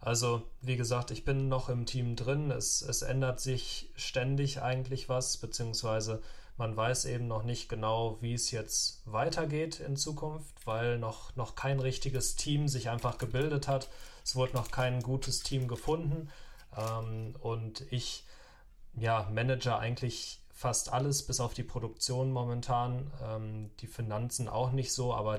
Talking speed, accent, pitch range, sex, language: 150 wpm, German, 110-130 Hz, male, German